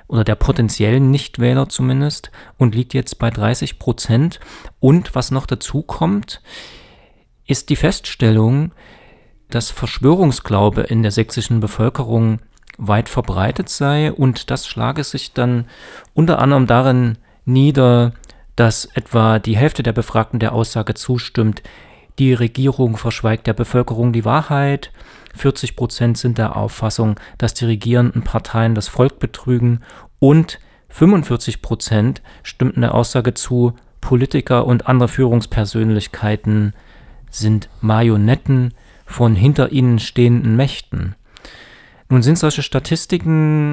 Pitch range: 115-135 Hz